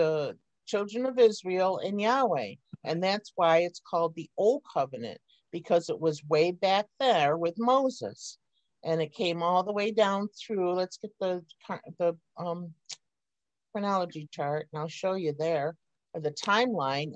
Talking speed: 155 wpm